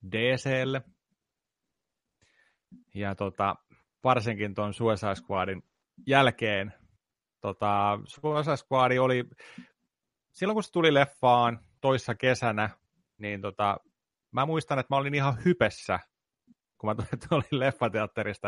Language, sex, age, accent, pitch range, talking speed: Finnish, male, 30-49, native, 105-135 Hz, 105 wpm